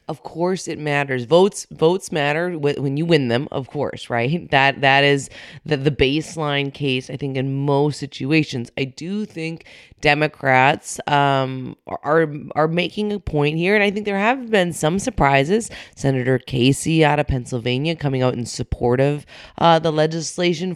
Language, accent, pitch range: English, American, 135-170 Hz